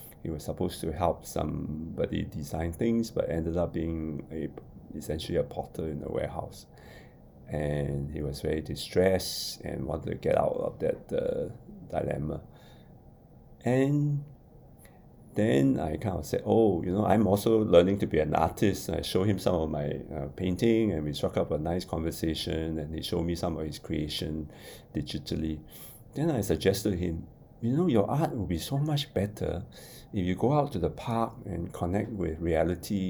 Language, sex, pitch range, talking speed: English, male, 80-115 Hz, 180 wpm